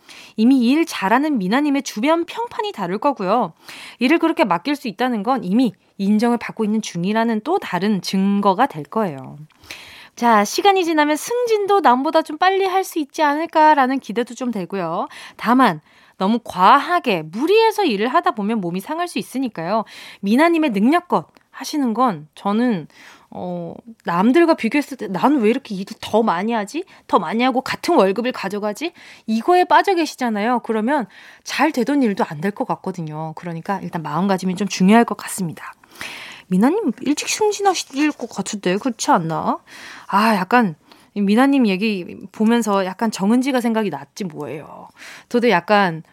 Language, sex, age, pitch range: Korean, female, 20-39, 200-290 Hz